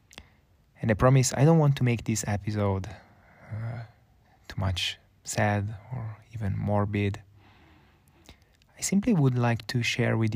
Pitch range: 100-115 Hz